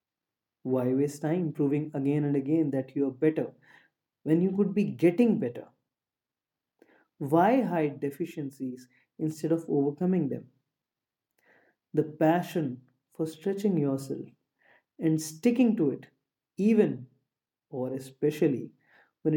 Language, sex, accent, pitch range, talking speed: English, male, Indian, 140-175 Hz, 115 wpm